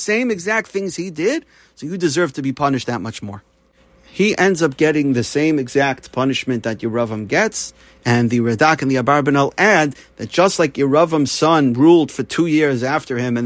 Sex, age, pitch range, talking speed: male, 40-59, 135-180 Hz, 195 wpm